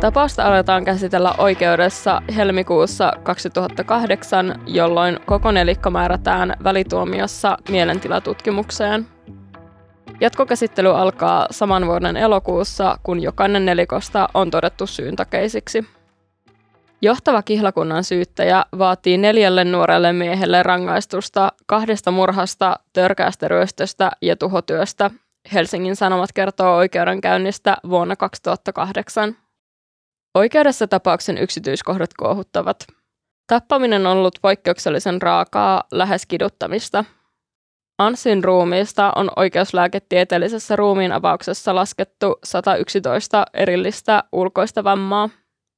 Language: English